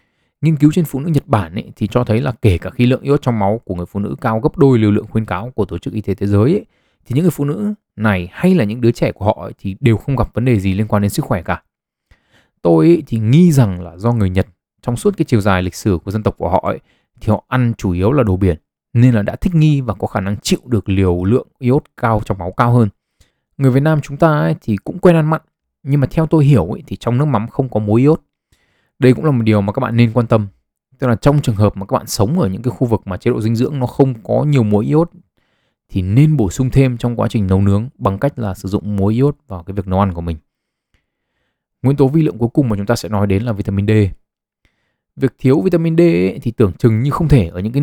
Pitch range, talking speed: 100-135 Hz, 285 wpm